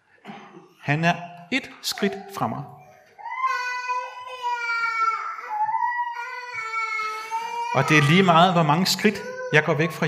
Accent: native